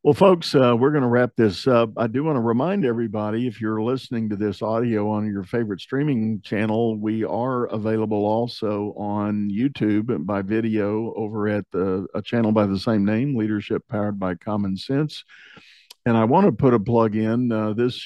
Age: 50-69